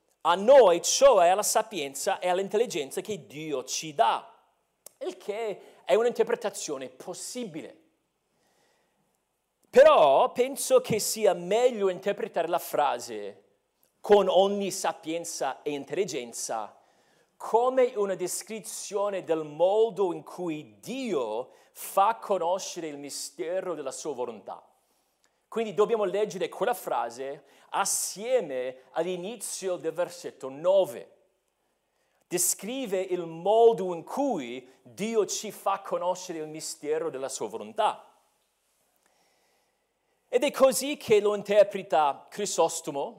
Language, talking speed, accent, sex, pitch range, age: Italian, 105 wpm, native, male, 175-250 Hz, 40-59